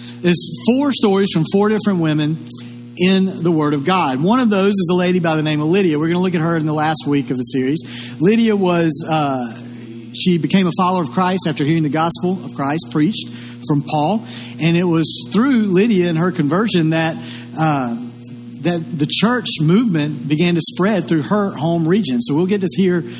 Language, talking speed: English, 205 wpm